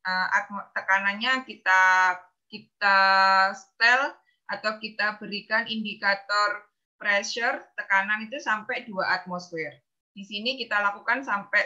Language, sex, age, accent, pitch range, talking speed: Indonesian, female, 20-39, native, 205-255 Hz, 100 wpm